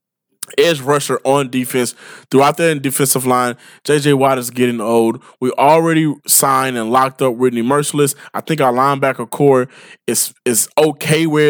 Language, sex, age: English, male, 20-39